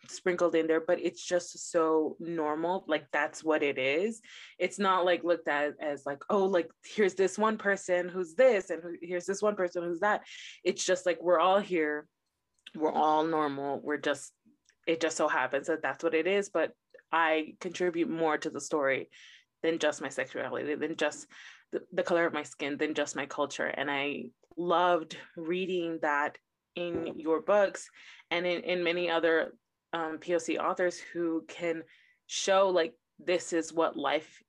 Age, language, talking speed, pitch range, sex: 20-39, English, 175 wpm, 155-180 Hz, female